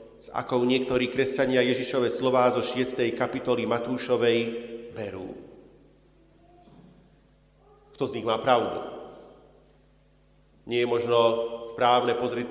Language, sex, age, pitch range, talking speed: Slovak, male, 40-59, 120-180 Hz, 100 wpm